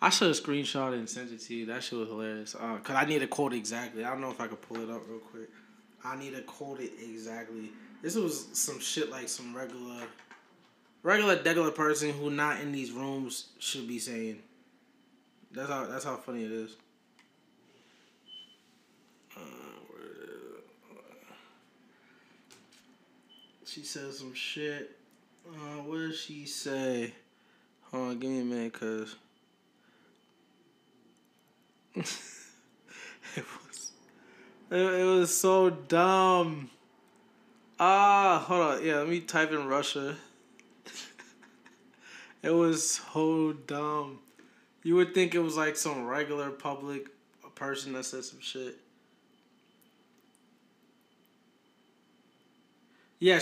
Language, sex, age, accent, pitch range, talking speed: English, male, 20-39, American, 130-175 Hz, 130 wpm